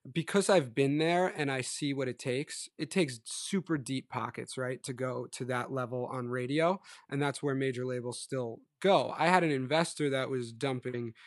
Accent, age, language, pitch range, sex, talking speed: American, 20-39, English, 125-145 Hz, male, 195 wpm